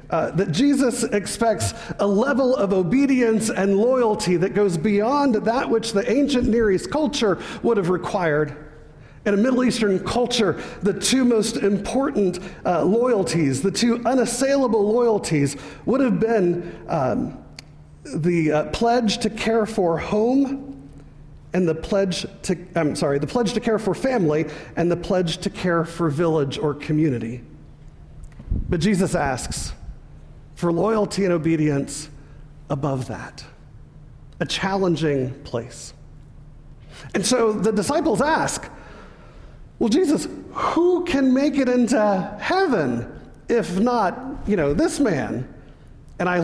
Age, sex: 40-59, male